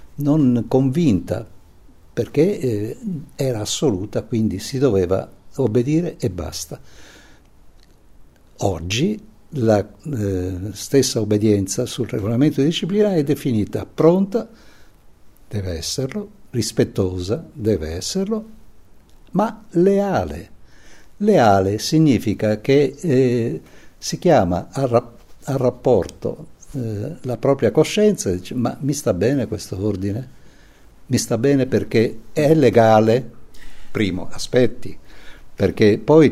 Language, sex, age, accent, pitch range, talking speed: Italian, male, 60-79, native, 100-140 Hz, 95 wpm